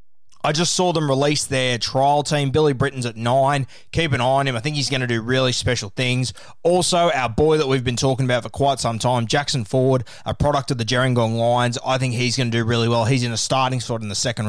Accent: Australian